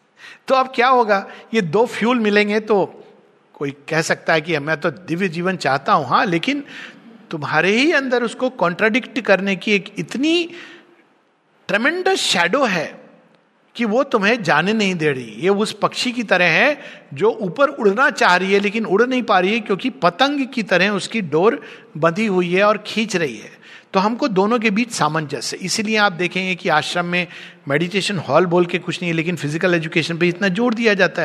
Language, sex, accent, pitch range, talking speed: Hindi, male, native, 170-220 Hz, 190 wpm